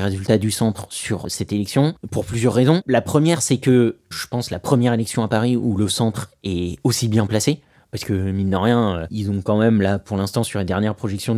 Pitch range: 105-130 Hz